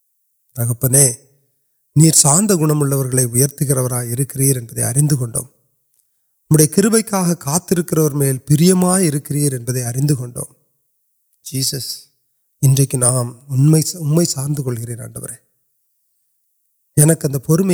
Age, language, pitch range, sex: 30-49, Urdu, 130-155 Hz, male